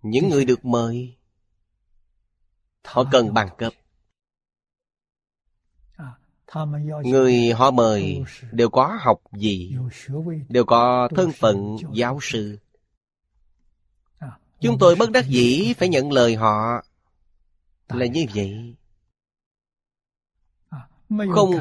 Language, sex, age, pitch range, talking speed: Vietnamese, male, 20-39, 100-150 Hz, 95 wpm